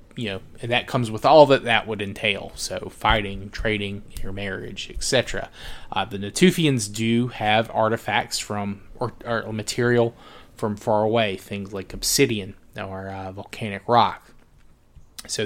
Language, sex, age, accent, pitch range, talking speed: English, male, 20-39, American, 100-120 Hz, 150 wpm